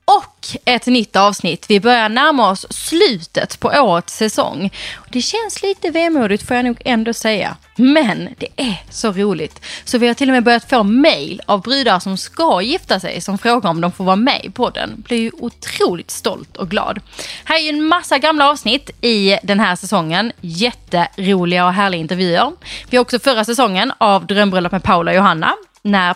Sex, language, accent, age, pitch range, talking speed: female, Swedish, native, 20-39, 185-255 Hz, 190 wpm